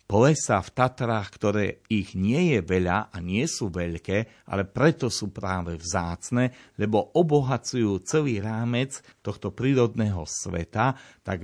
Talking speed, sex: 130 wpm, male